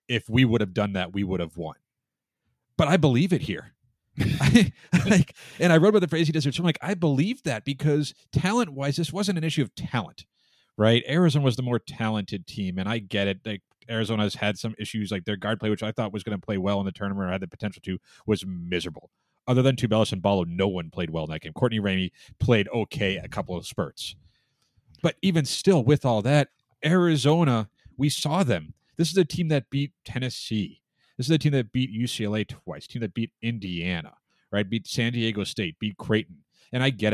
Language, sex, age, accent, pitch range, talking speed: English, male, 30-49, American, 100-140 Hz, 225 wpm